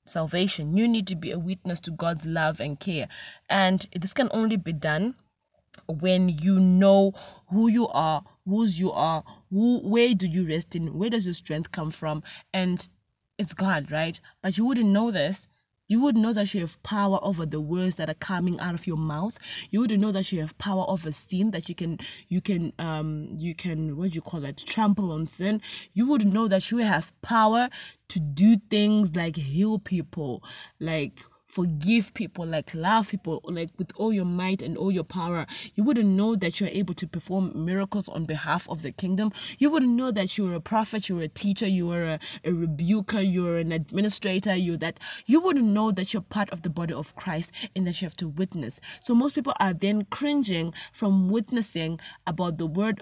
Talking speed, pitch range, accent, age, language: 205 wpm, 165-210 Hz, South African, 20-39, English